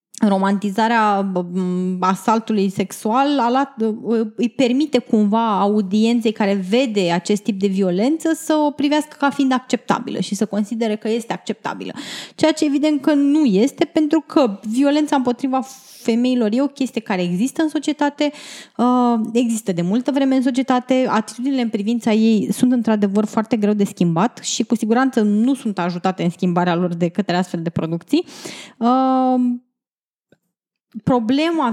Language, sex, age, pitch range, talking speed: Romanian, female, 20-39, 210-265 Hz, 140 wpm